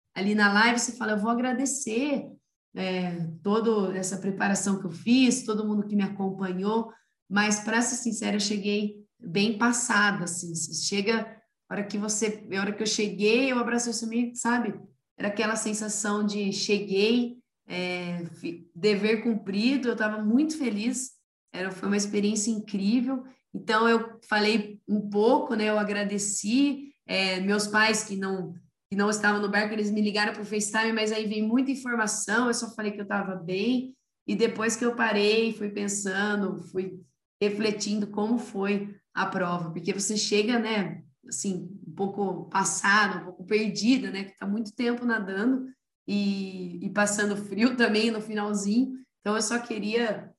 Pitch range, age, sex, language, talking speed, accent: 200-230 Hz, 20-39, female, Portuguese, 160 wpm, Brazilian